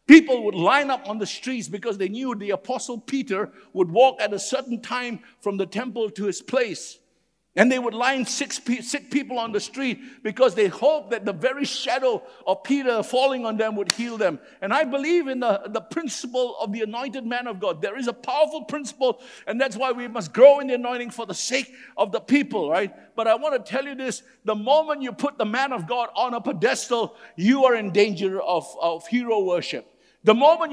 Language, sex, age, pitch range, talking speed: English, male, 60-79, 220-275 Hz, 220 wpm